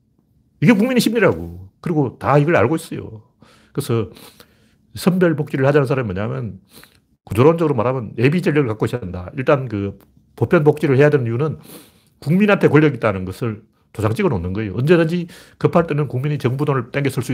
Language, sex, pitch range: Korean, male, 110-155 Hz